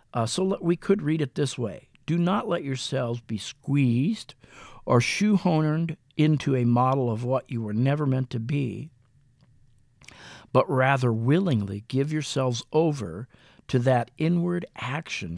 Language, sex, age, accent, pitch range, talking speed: English, male, 50-69, American, 120-150 Hz, 145 wpm